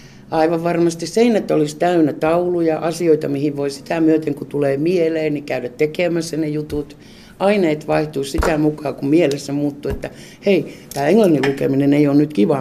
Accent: native